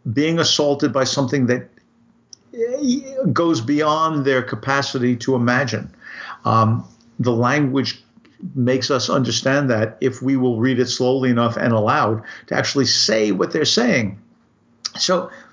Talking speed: 130 wpm